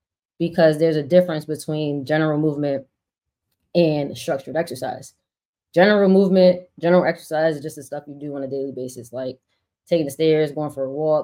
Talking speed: 170 wpm